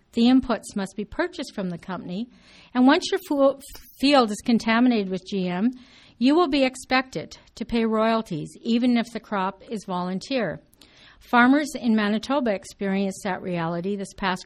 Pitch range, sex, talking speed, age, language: 185-240 Hz, female, 155 wpm, 50-69, English